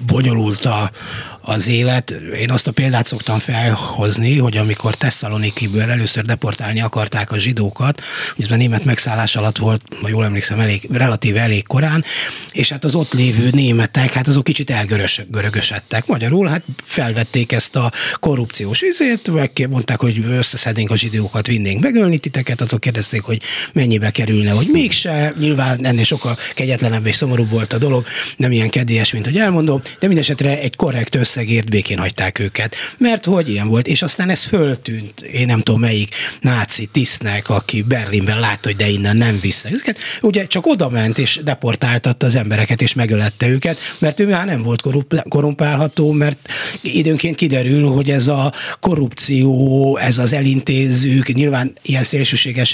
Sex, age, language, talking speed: male, 30-49, Hungarian, 155 wpm